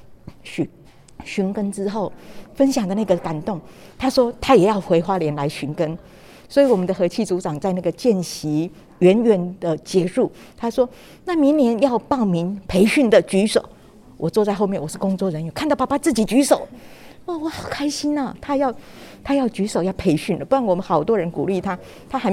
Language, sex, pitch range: Chinese, female, 170-220 Hz